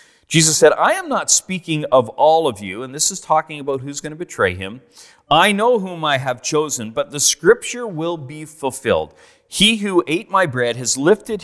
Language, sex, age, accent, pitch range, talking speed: English, male, 40-59, American, 125-185 Hz, 205 wpm